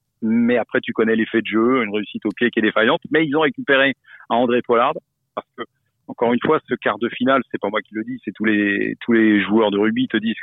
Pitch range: 110-130 Hz